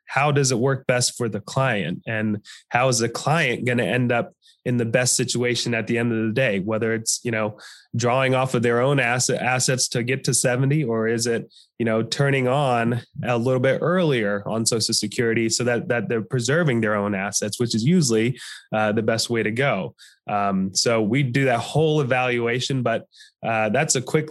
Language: English